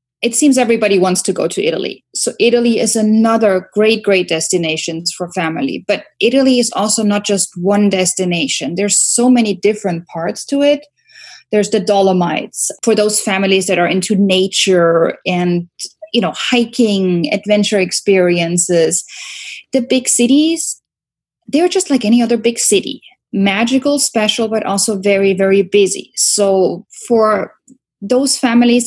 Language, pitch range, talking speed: English, 185-235 Hz, 145 wpm